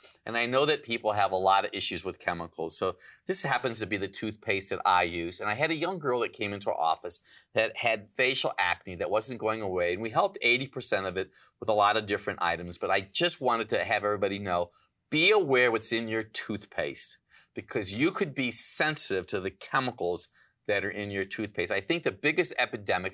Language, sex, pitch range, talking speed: English, male, 100-140 Hz, 220 wpm